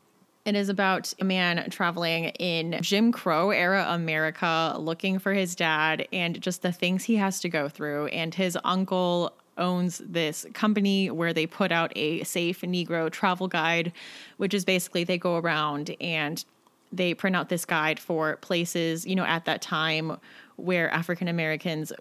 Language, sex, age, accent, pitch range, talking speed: English, female, 20-39, American, 160-190 Hz, 165 wpm